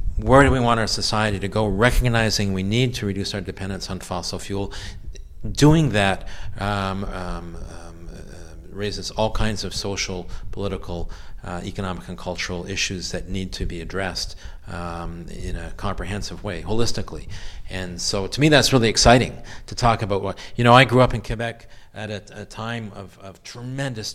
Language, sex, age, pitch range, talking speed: English, male, 40-59, 90-110 Hz, 165 wpm